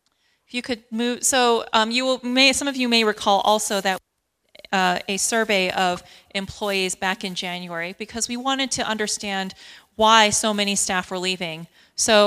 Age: 30-49